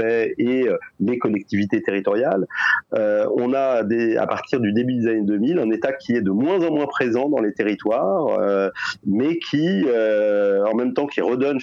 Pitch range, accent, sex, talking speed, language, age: 105-140 Hz, French, male, 185 wpm, French, 40-59